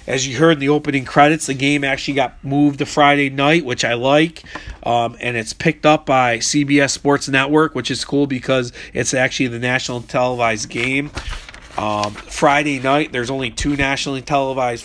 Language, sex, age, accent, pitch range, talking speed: English, male, 40-59, American, 125-145 Hz, 180 wpm